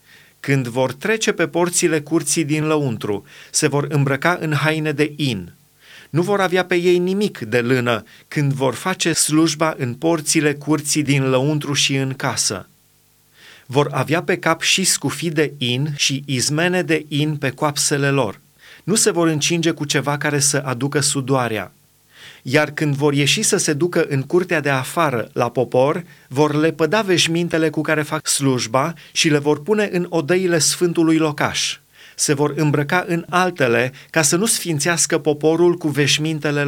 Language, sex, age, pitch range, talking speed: Romanian, male, 30-49, 140-165 Hz, 165 wpm